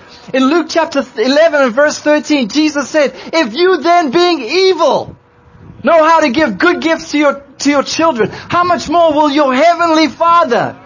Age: 30-49